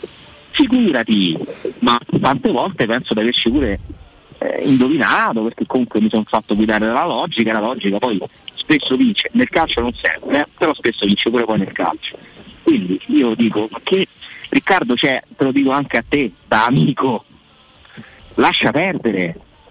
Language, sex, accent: Italian, male, native